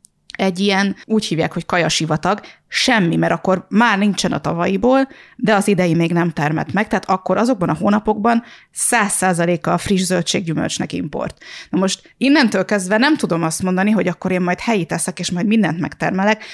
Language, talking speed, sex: Hungarian, 170 wpm, female